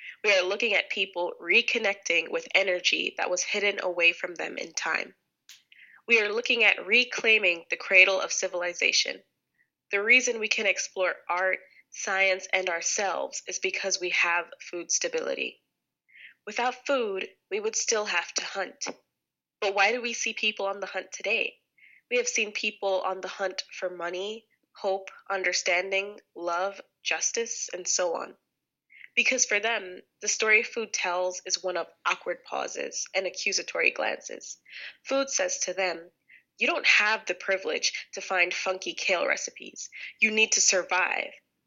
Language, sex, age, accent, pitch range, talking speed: English, female, 20-39, American, 185-235 Hz, 155 wpm